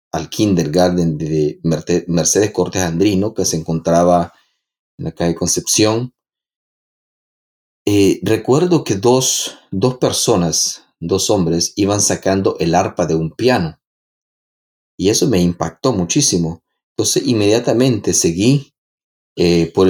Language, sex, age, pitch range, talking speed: Spanish, male, 30-49, 85-105 Hz, 115 wpm